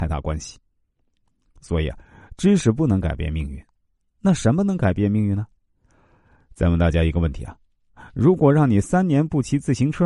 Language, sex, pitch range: Chinese, male, 85-130 Hz